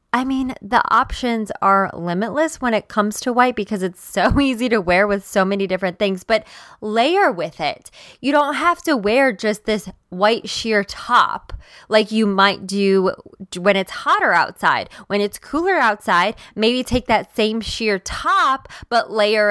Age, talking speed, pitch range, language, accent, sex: 20-39, 170 wpm, 190-230 Hz, English, American, female